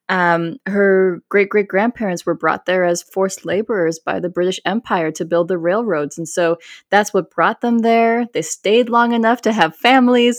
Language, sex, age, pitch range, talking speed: English, female, 20-39, 170-230 Hz, 180 wpm